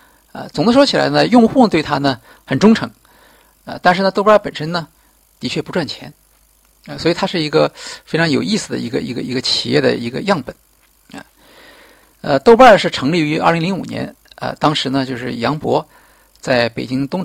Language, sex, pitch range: Chinese, male, 135-180 Hz